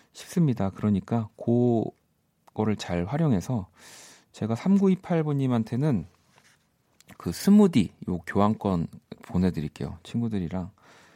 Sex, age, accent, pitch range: male, 40-59, native, 90-135 Hz